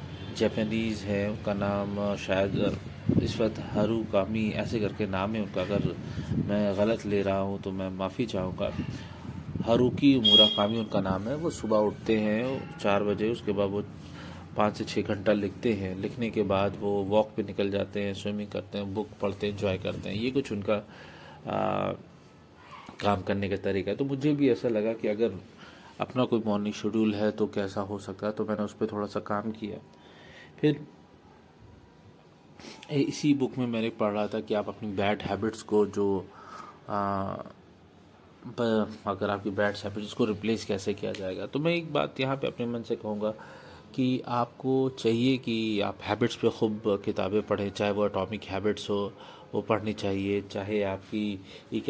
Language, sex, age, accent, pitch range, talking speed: Hindi, male, 30-49, native, 100-110 Hz, 170 wpm